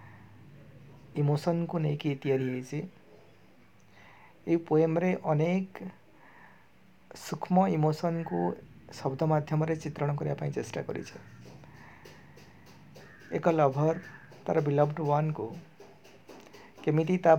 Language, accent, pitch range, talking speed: Hindi, native, 140-160 Hz, 60 wpm